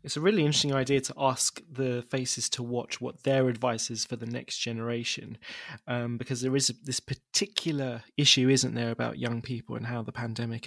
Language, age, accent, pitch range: English, 20-39, British, 120-145 Hz